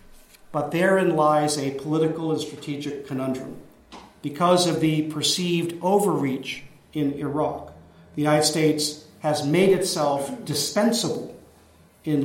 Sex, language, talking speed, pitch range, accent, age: male, English, 115 wpm, 145-170 Hz, American, 50-69